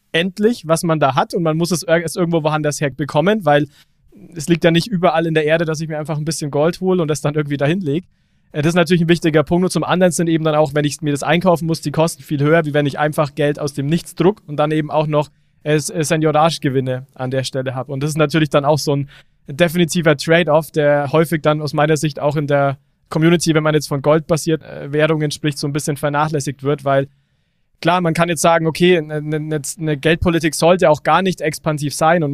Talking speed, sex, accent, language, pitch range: 240 wpm, male, German, German, 145-165 Hz